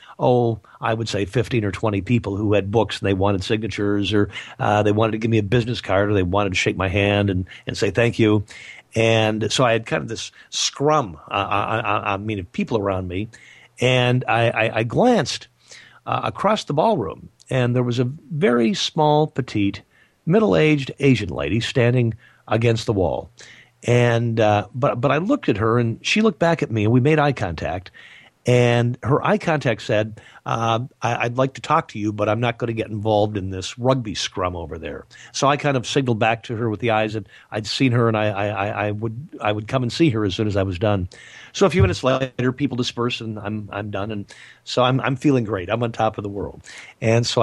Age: 50-69